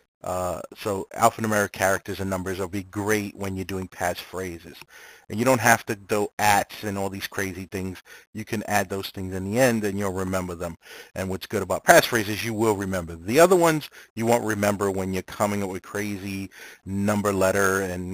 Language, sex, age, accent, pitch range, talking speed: English, male, 30-49, American, 95-110 Hz, 195 wpm